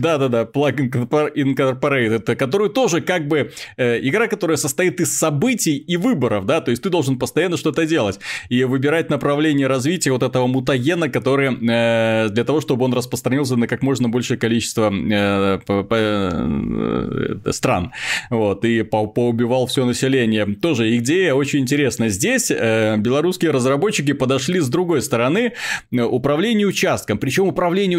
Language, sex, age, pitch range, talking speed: Russian, male, 20-39, 115-155 Hz, 140 wpm